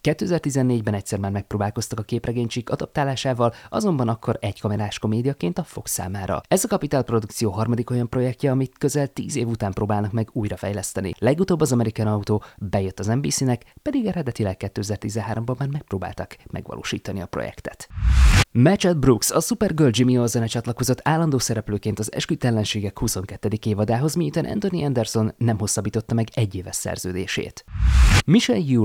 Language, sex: Hungarian, male